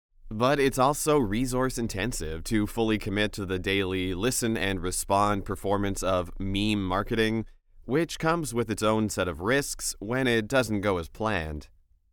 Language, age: English, 30-49